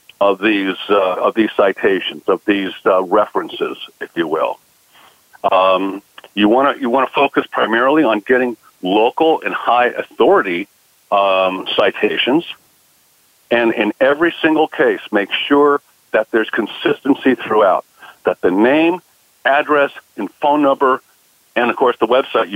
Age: 50-69